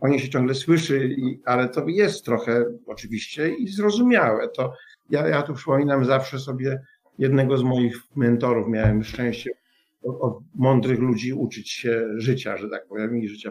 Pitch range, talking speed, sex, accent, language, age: 120-155 Hz, 155 wpm, male, native, Polish, 50-69